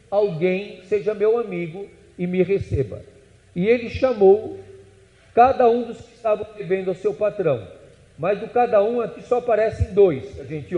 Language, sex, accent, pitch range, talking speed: Portuguese, male, Brazilian, 140-205 Hz, 160 wpm